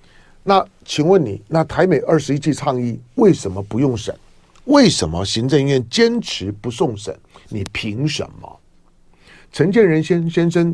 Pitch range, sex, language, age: 130-220 Hz, male, Chinese, 50-69